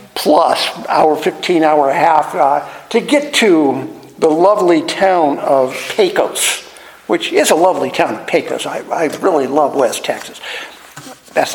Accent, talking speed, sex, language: American, 150 wpm, male, English